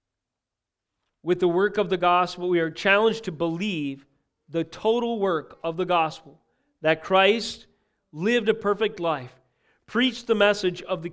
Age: 40-59